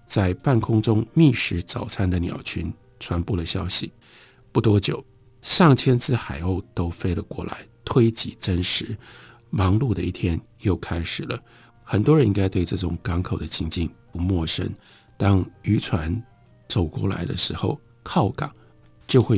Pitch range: 95-120 Hz